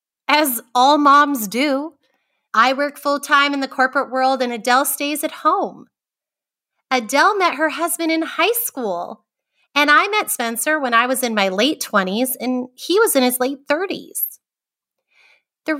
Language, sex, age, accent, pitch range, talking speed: English, female, 30-49, American, 225-310 Hz, 160 wpm